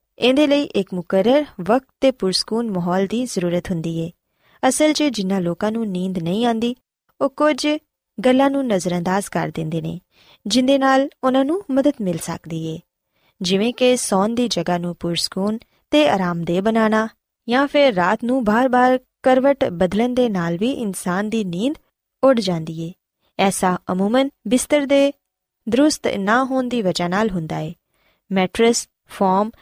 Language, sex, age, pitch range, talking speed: Punjabi, female, 20-39, 185-260 Hz, 130 wpm